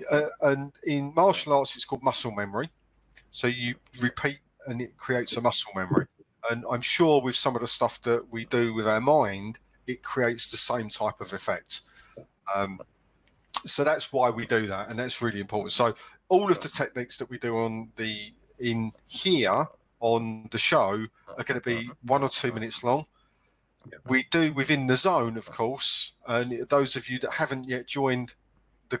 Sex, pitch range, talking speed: male, 110-130 Hz, 185 wpm